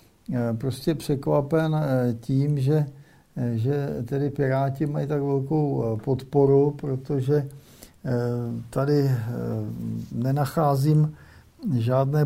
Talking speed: 75 wpm